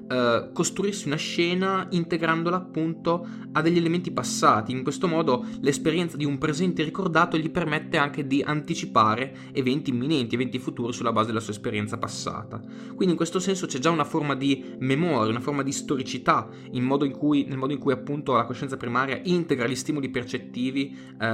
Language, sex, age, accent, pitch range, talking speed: Italian, male, 20-39, native, 120-165 Hz, 175 wpm